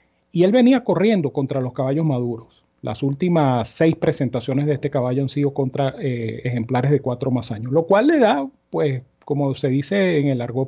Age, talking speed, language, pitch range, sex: 40-59, 195 wpm, Spanish, 130-165 Hz, male